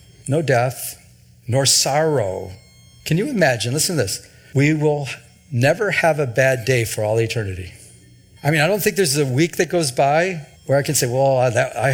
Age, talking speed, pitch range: 50-69, 185 wpm, 130-180 Hz